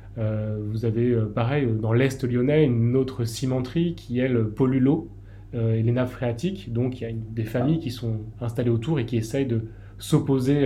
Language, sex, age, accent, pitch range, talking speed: French, male, 20-39, French, 110-130 Hz, 195 wpm